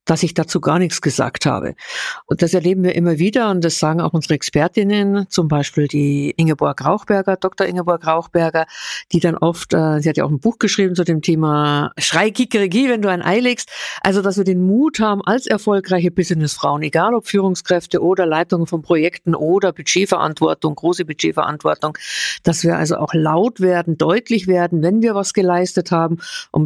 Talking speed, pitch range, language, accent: 180 wpm, 165-200 Hz, German, German